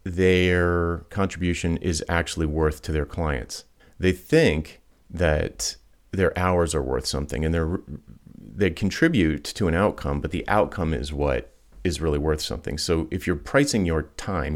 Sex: male